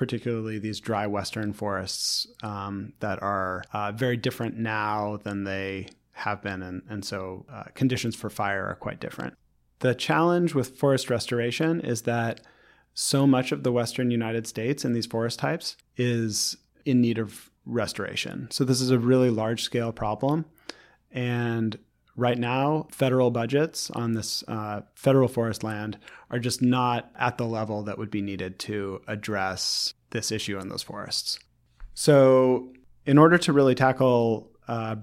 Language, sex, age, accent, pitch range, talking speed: English, male, 30-49, American, 105-130 Hz, 160 wpm